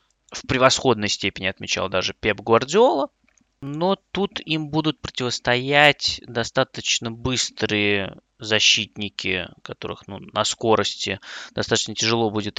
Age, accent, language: 20-39, native, Russian